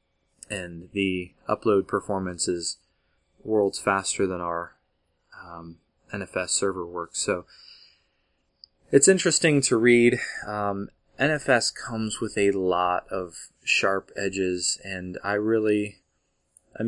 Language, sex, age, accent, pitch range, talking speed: English, male, 20-39, American, 90-105 Hz, 110 wpm